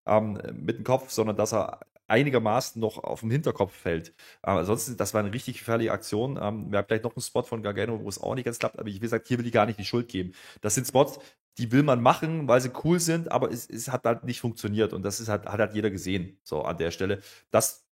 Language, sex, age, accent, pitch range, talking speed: German, male, 30-49, German, 105-135 Hz, 255 wpm